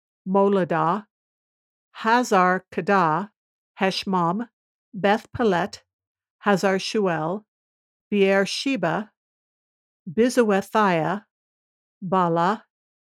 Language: English